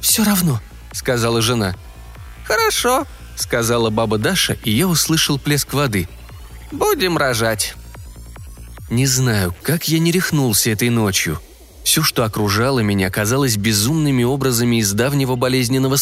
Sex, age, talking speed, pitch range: male, 20-39, 125 wpm, 110-150 Hz